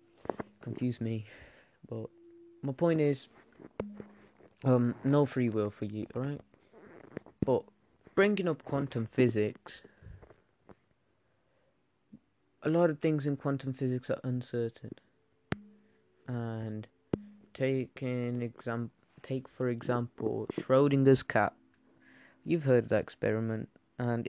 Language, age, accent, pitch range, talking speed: English, 20-39, British, 110-135 Hz, 105 wpm